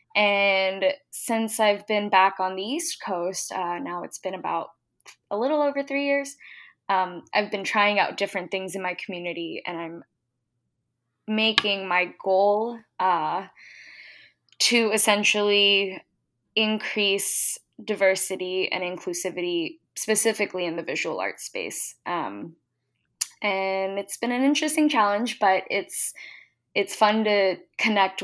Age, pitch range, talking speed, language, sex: 10-29, 180-215 Hz, 125 wpm, English, female